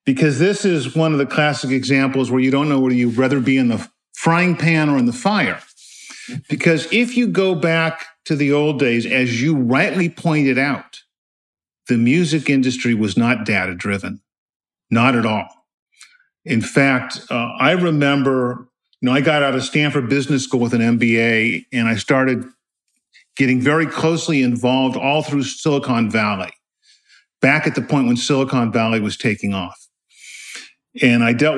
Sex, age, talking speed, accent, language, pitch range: male, 50-69, 165 wpm, American, English, 125-155 Hz